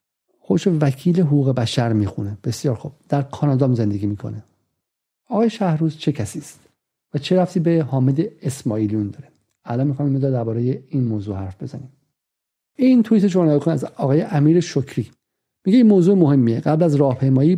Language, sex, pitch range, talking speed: Persian, male, 130-170 Hz, 155 wpm